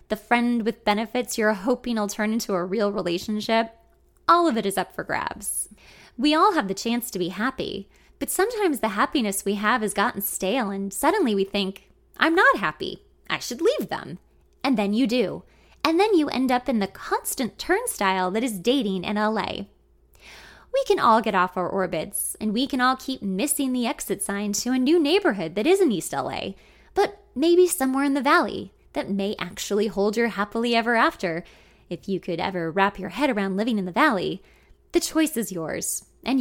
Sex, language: female, English